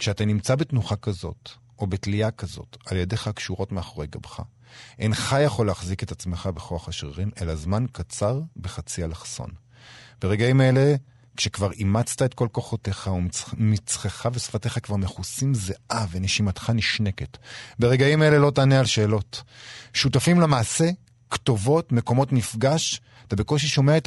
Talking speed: 130 wpm